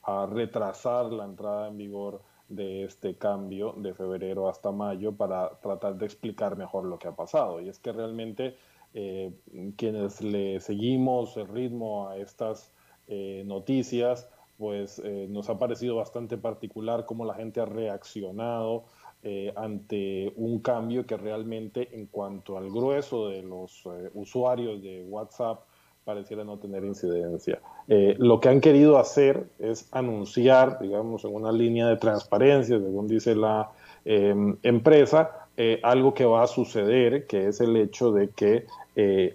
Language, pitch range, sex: Spanish, 100-120 Hz, male